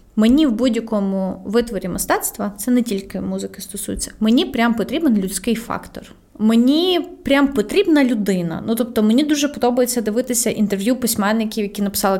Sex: female